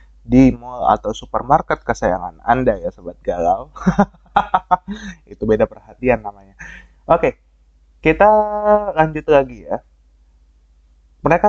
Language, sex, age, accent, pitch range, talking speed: Indonesian, male, 20-39, native, 95-135 Hz, 105 wpm